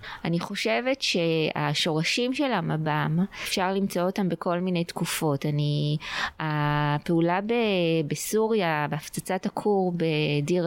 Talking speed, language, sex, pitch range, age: 100 wpm, Hebrew, female, 165-200 Hz, 20-39